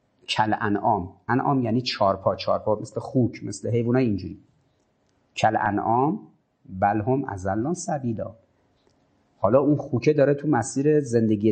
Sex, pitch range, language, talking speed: male, 110-160 Hz, Persian, 120 wpm